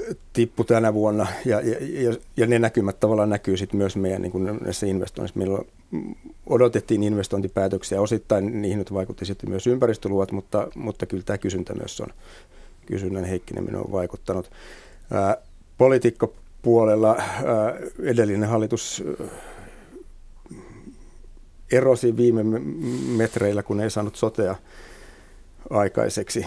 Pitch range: 95-115 Hz